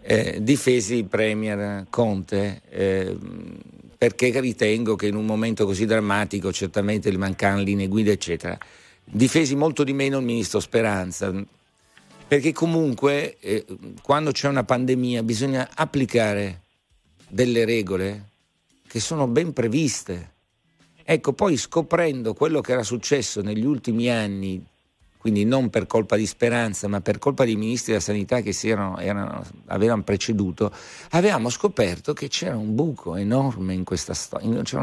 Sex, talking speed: male, 140 wpm